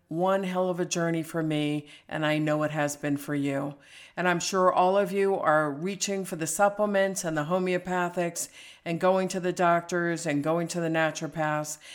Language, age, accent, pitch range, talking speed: English, 50-69, American, 150-185 Hz, 195 wpm